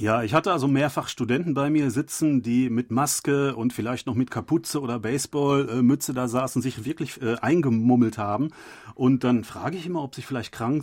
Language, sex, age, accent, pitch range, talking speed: German, male, 40-59, German, 120-145 Hz, 200 wpm